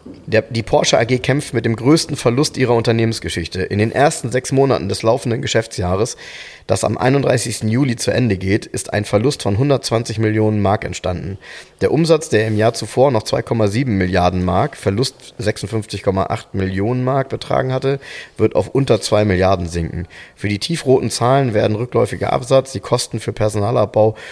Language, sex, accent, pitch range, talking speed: German, male, German, 100-125 Hz, 165 wpm